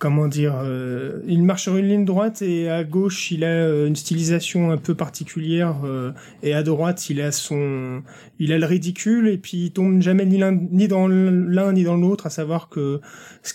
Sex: male